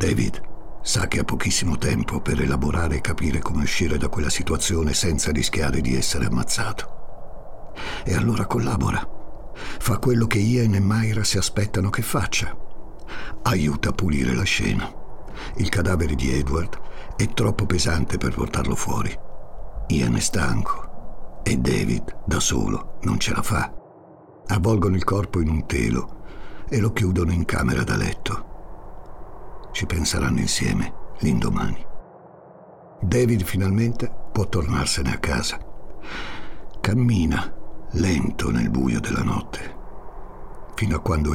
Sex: male